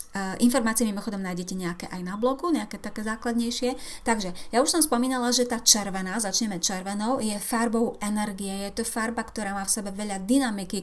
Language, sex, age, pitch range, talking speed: Slovak, female, 30-49, 200-245 Hz, 185 wpm